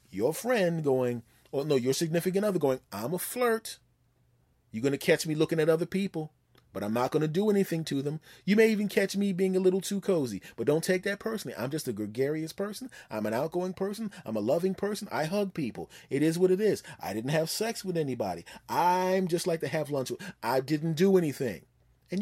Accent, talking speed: American, 225 wpm